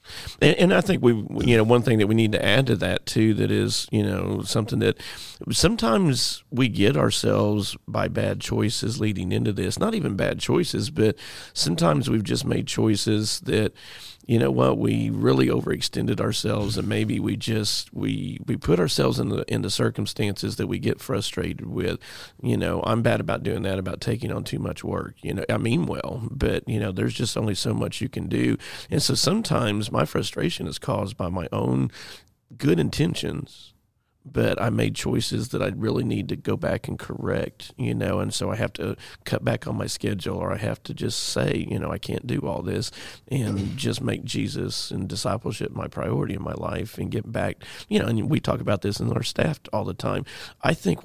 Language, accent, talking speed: English, American, 210 wpm